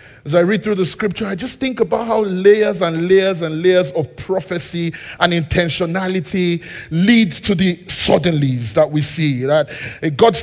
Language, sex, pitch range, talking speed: English, male, 150-205 Hz, 165 wpm